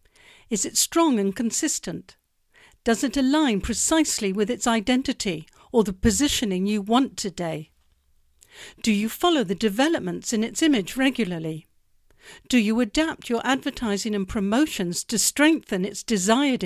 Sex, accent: female, British